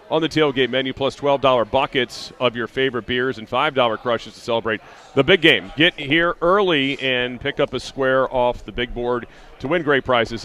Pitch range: 115-135 Hz